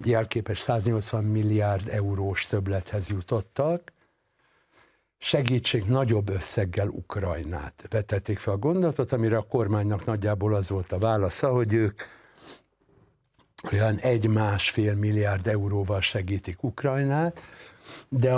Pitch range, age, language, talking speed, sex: 100-125 Hz, 60-79, Hungarian, 105 wpm, male